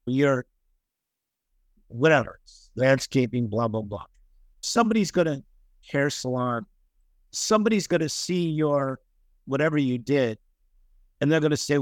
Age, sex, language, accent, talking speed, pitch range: 50-69, male, English, American, 120 wpm, 110-150 Hz